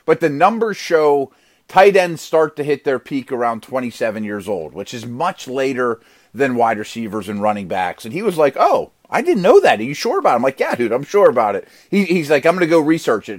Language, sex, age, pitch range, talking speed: English, male, 30-49, 125-170 Hz, 245 wpm